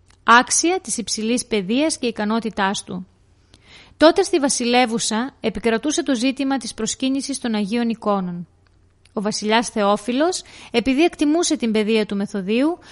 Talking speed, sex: 125 wpm, female